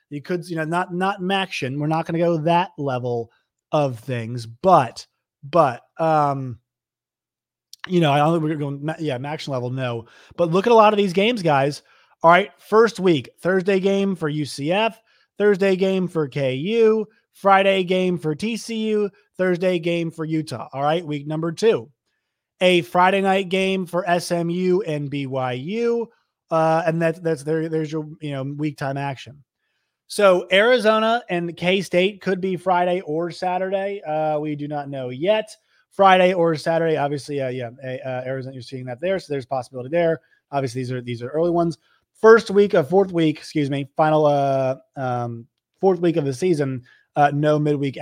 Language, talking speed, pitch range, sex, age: English, 175 wpm, 140-185 Hz, male, 30-49